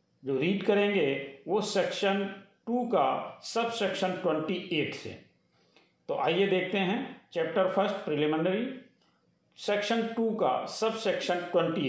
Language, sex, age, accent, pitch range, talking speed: Hindi, male, 50-69, native, 170-210 Hz, 125 wpm